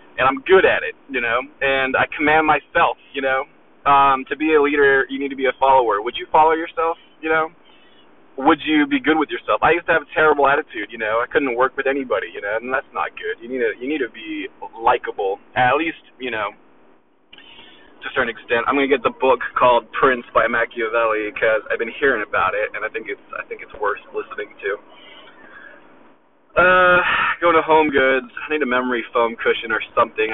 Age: 20-39